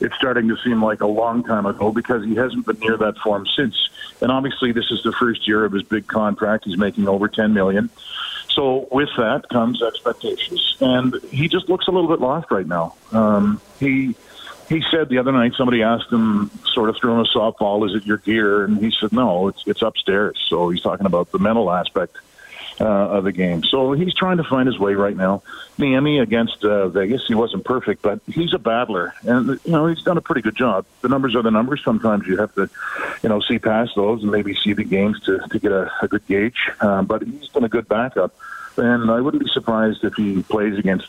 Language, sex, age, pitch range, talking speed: English, male, 50-69, 100-130 Hz, 230 wpm